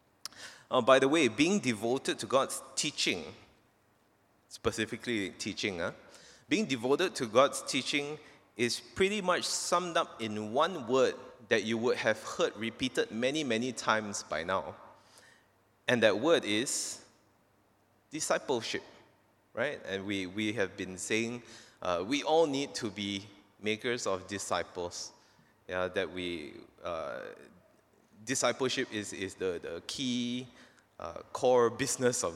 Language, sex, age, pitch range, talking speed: English, male, 20-39, 105-140 Hz, 130 wpm